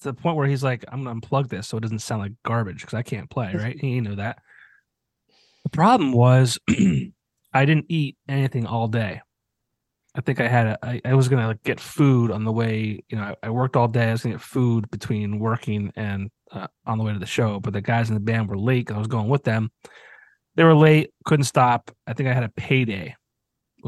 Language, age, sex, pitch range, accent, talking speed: English, 30-49, male, 110-135 Hz, American, 240 wpm